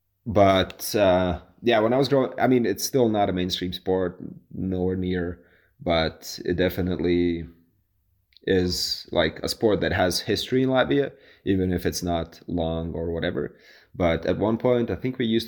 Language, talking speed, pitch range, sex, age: English, 170 wpm, 85-95 Hz, male, 20-39